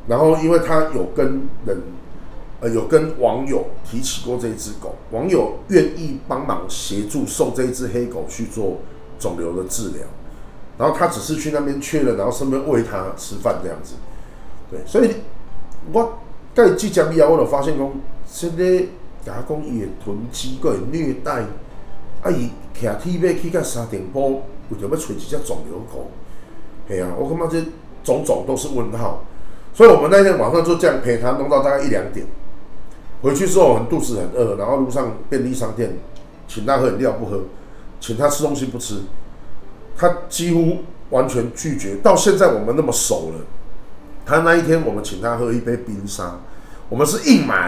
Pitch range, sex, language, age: 100-155 Hz, male, Chinese, 40-59